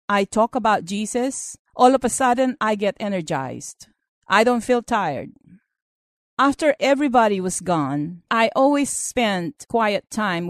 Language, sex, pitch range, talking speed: English, female, 175-270 Hz, 135 wpm